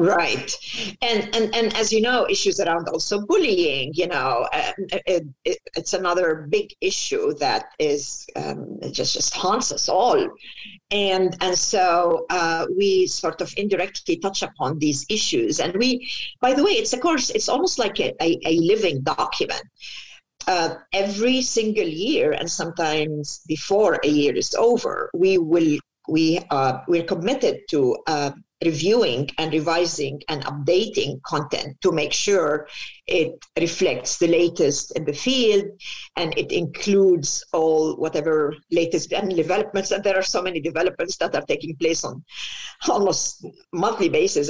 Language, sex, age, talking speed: English, female, 50-69, 150 wpm